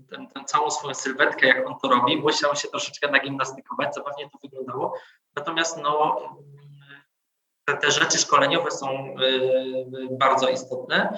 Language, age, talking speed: Polish, 20-39, 130 wpm